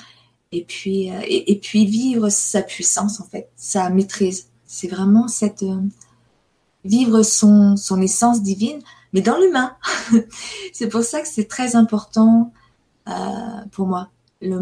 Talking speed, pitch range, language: 150 wpm, 190-220 Hz, French